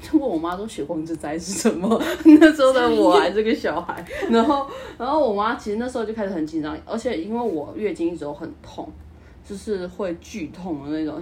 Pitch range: 155-230 Hz